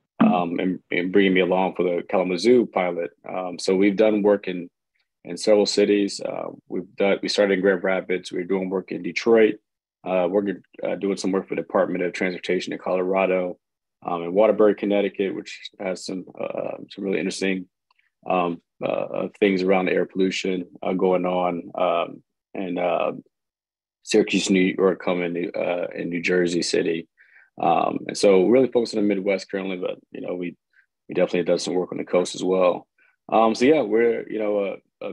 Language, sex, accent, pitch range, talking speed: English, male, American, 90-100 Hz, 190 wpm